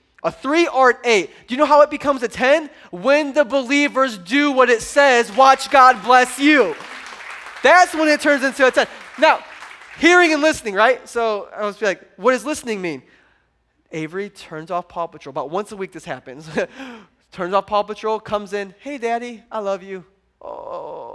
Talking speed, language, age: 195 wpm, English, 20-39